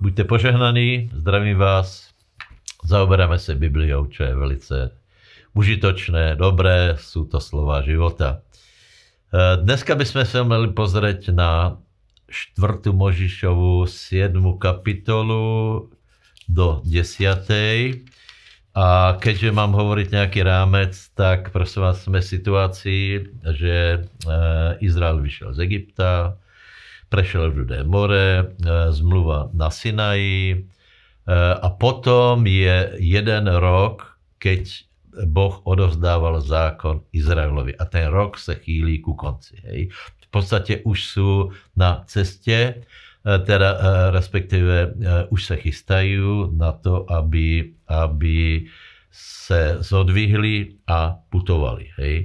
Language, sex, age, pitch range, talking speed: Slovak, male, 60-79, 85-100 Hz, 105 wpm